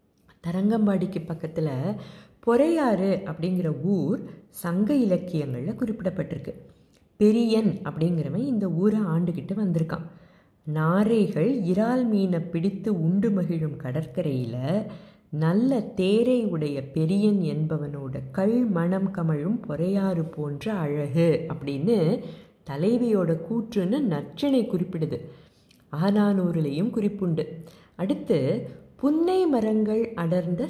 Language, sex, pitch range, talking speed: Tamil, female, 160-220 Hz, 85 wpm